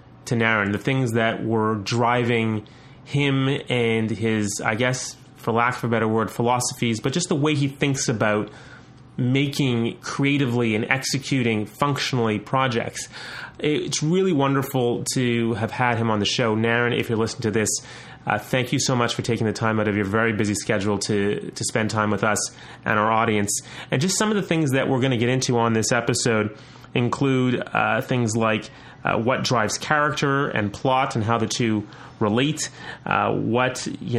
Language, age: English, 30-49